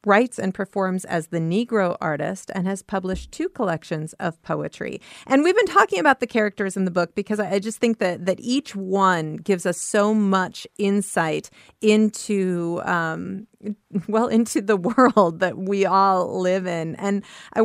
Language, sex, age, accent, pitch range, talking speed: English, female, 40-59, American, 175-210 Hz, 175 wpm